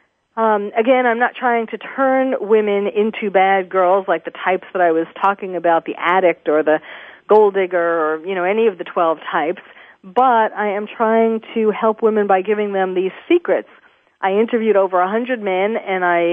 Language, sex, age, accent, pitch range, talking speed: English, female, 40-59, American, 180-230 Hz, 190 wpm